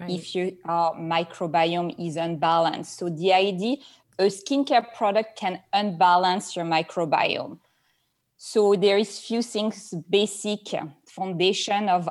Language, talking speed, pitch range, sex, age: English, 125 wpm, 170-205 Hz, female, 20-39